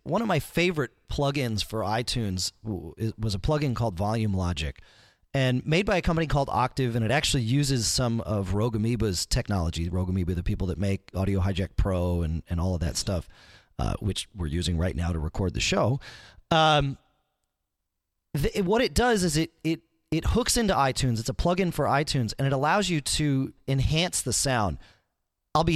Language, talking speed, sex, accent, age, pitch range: English, 185 wpm, male, American, 30-49, 100-145 Hz